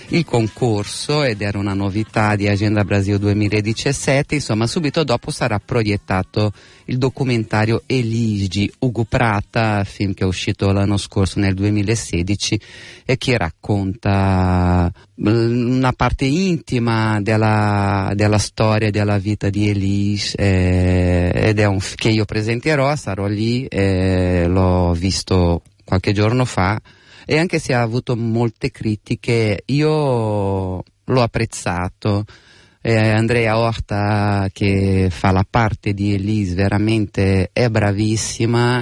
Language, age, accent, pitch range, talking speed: Italian, 30-49, native, 100-115 Hz, 120 wpm